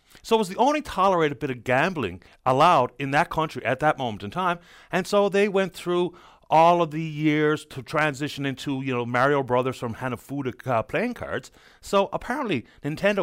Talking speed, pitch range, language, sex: 190 wpm, 120-170 Hz, English, male